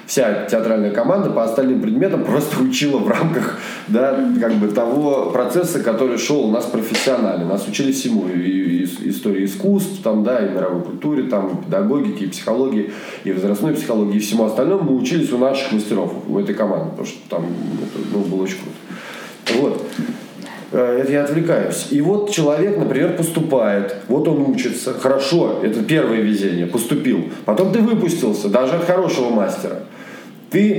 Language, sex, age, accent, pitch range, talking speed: Russian, male, 20-39, native, 110-170 Hz, 160 wpm